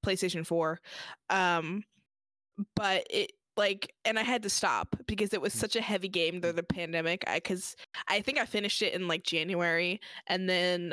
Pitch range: 180-235 Hz